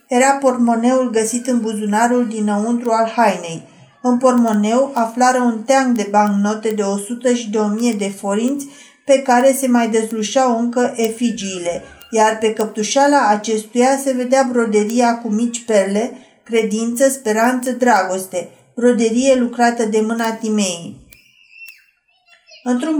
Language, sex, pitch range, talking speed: Romanian, female, 220-255 Hz, 125 wpm